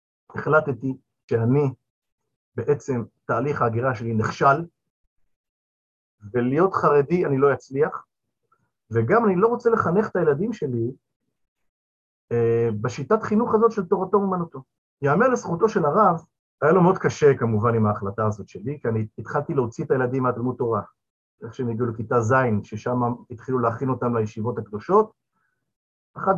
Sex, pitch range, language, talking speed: male, 120-185 Hz, Hebrew, 135 wpm